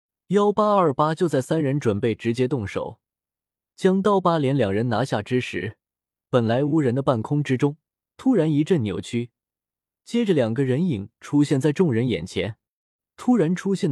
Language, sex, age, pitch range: Chinese, male, 20-39, 115-165 Hz